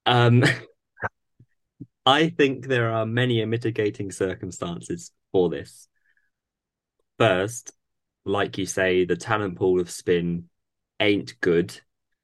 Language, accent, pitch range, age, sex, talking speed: English, British, 85-105 Hz, 20-39, male, 105 wpm